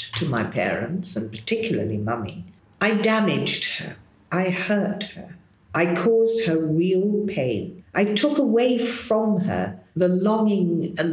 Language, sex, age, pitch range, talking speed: English, female, 50-69, 140-200 Hz, 135 wpm